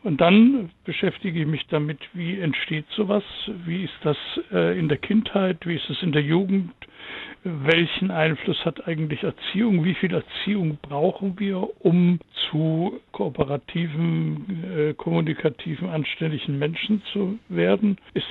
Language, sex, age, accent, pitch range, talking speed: German, male, 60-79, German, 155-195 Hz, 130 wpm